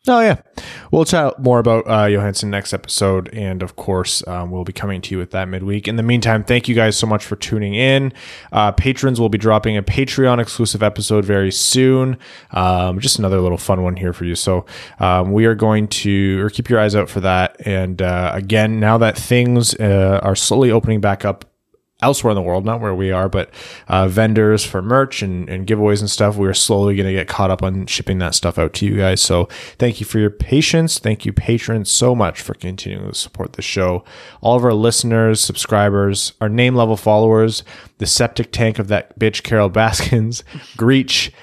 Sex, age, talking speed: male, 20-39, 210 wpm